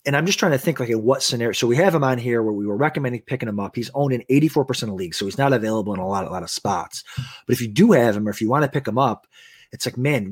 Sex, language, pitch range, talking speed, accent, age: male, English, 115-140 Hz, 335 wpm, American, 30-49